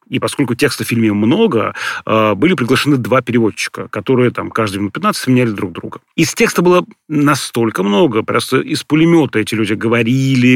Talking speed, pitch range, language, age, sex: 165 wpm, 115-140 Hz, Russian, 30-49, male